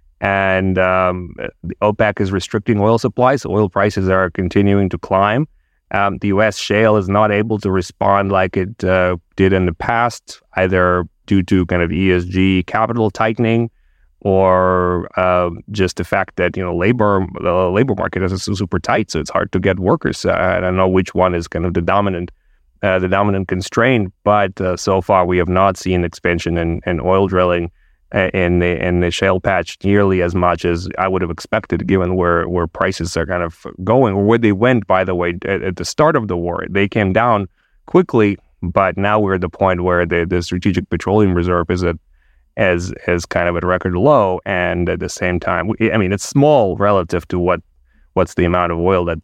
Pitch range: 90-100 Hz